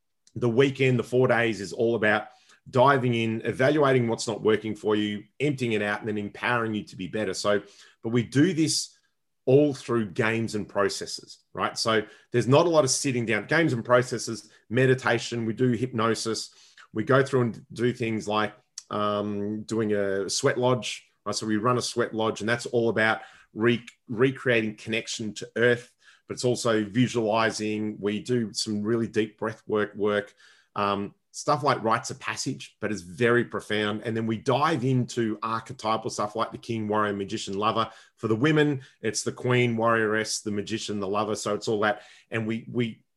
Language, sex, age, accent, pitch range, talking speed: English, male, 30-49, Australian, 110-125 Hz, 180 wpm